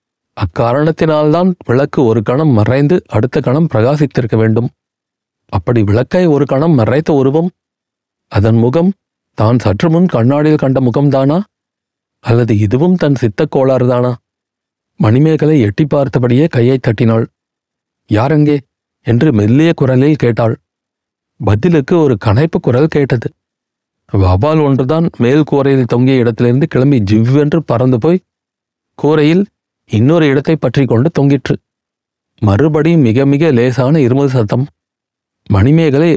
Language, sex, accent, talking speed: Tamil, male, native, 105 wpm